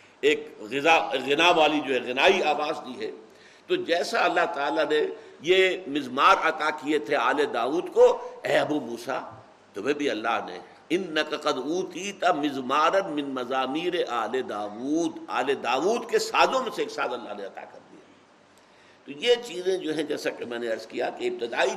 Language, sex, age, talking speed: Urdu, male, 60-79, 175 wpm